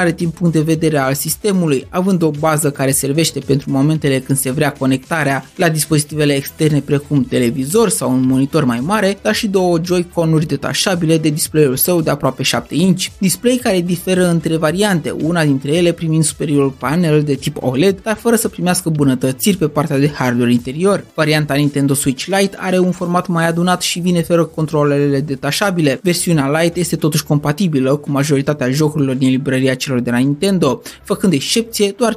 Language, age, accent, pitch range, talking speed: Romanian, 20-39, native, 140-180 Hz, 175 wpm